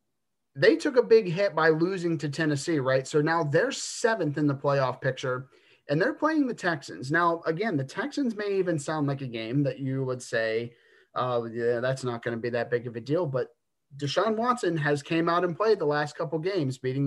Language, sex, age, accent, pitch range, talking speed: English, male, 30-49, American, 135-175 Hz, 220 wpm